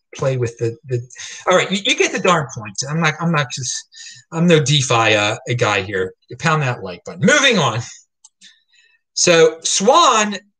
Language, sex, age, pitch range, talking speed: English, male, 30-49, 135-215 Hz, 185 wpm